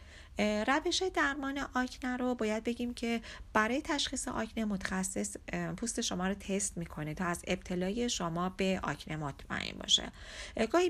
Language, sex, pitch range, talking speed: Persian, female, 175-235 Hz, 130 wpm